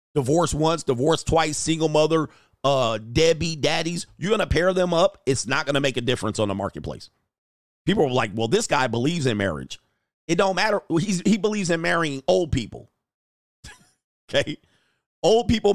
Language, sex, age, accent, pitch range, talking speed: English, male, 40-59, American, 125-165 Hz, 180 wpm